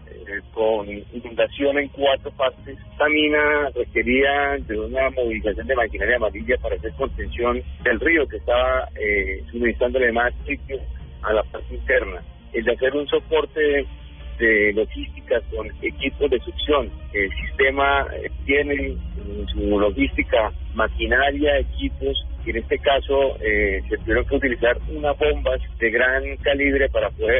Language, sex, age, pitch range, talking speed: Spanish, male, 40-59, 115-155 Hz, 135 wpm